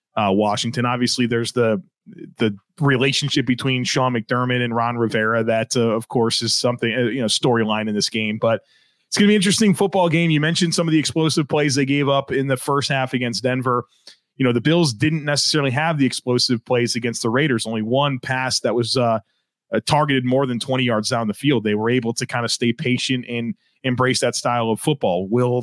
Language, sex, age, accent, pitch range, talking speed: English, male, 30-49, American, 120-150 Hz, 220 wpm